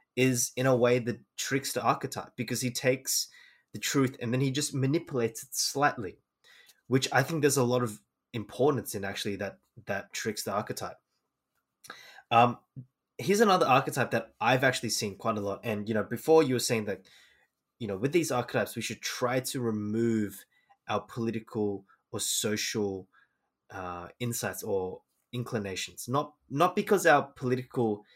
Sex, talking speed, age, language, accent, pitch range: male, 165 wpm, 20-39, English, Australian, 110-135 Hz